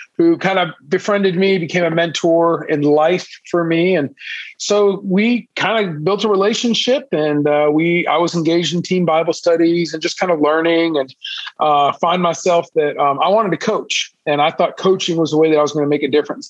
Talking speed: 220 wpm